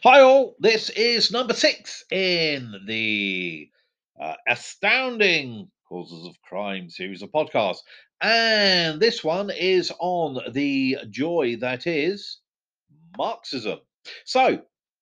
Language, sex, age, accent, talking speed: English, male, 40-59, British, 110 wpm